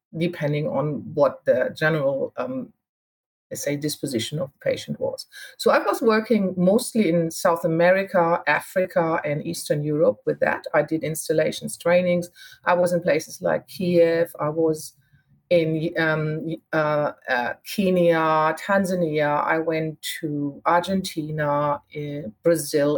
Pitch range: 155-200 Hz